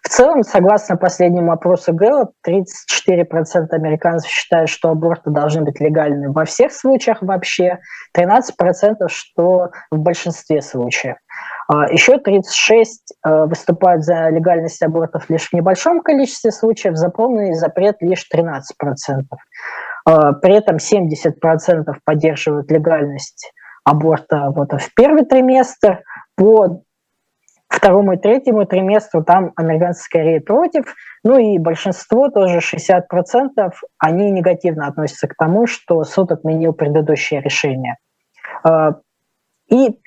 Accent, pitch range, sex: native, 160-200 Hz, female